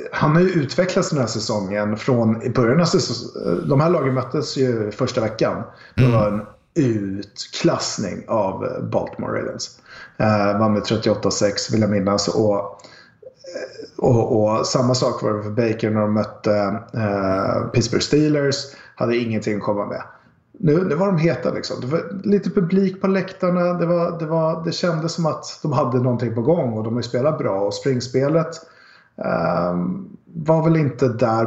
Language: Swedish